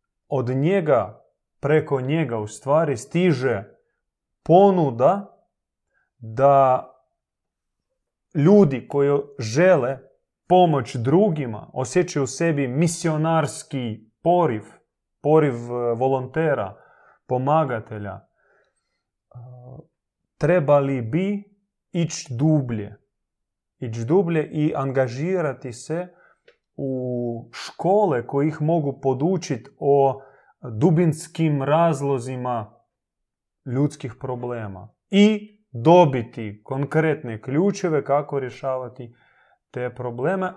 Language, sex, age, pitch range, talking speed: Croatian, male, 30-49, 125-170 Hz, 75 wpm